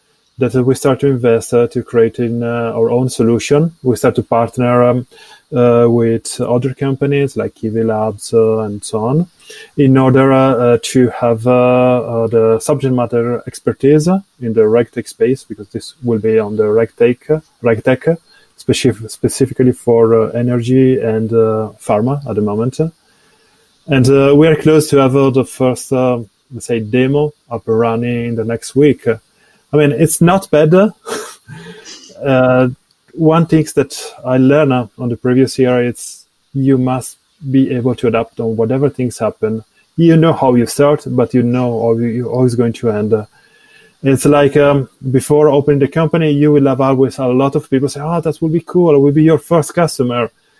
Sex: male